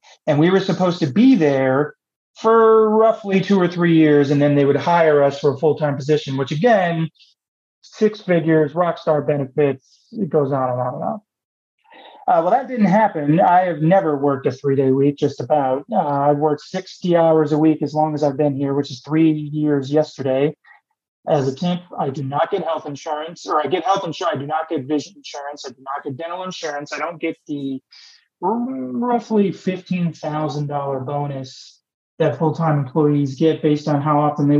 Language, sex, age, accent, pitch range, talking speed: English, male, 30-49, American, 140-170 Hz, 195 wpm